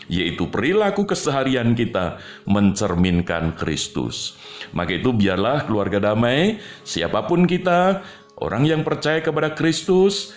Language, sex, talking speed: Indonesian, male, 105 wpm